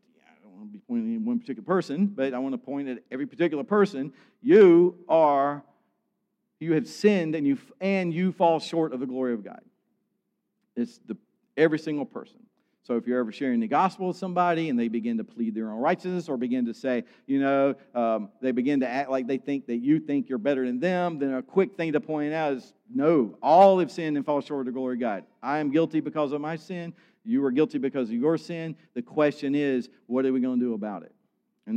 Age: 50-69